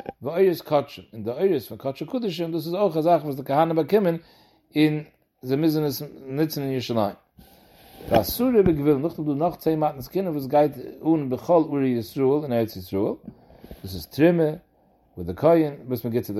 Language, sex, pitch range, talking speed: English, male, 125-160 Hz, 110 wpm